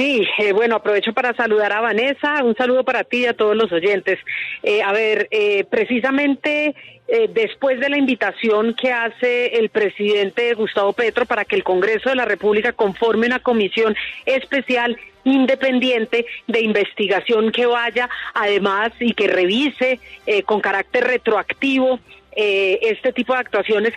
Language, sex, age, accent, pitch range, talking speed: Spanish, female, 40-59, Colombian, 215-260 Hz, 155 wpm